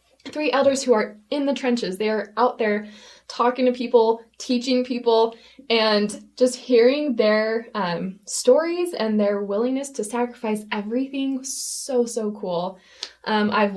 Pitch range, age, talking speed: 200-240 Hz, 20-39, 145 wpm